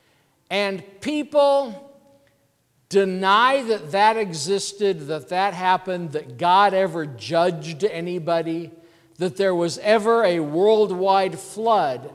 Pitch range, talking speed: 165-210 Hz, 105 wpm